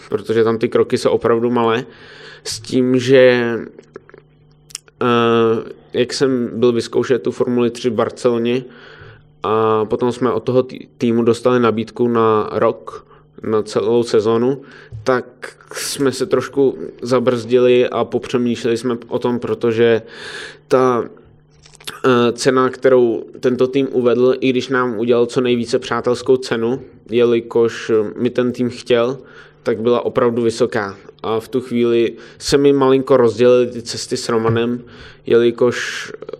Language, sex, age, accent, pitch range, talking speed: Czech, male, 20-39, native, 115-130 Hz, 130 wpm